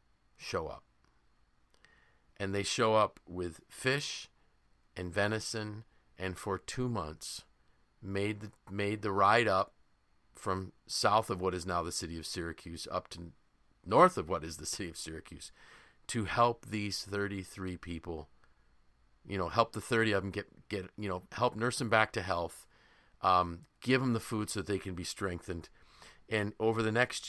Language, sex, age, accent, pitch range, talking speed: English, male, 40-59, American, 85-115 Hz, 165 wpm